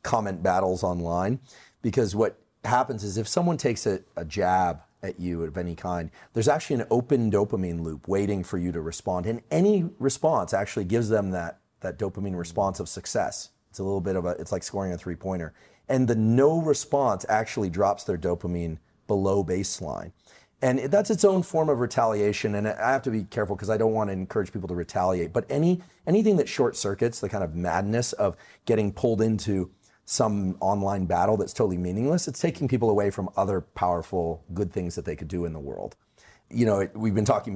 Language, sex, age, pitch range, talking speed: English, male, 40-59, 90-120 Hz, 200 wpm